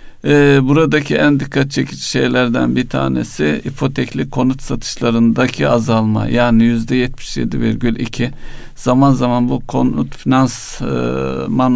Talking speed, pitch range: 110 wpm, 115-130 Hz